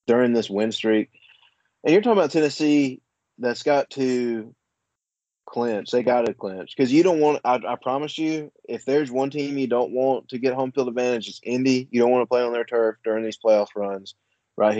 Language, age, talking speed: English, 20-39, 210 wpm